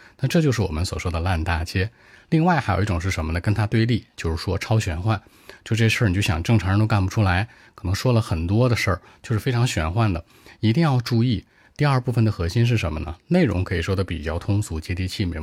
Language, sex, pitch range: Chinese, male, 90-115 Hz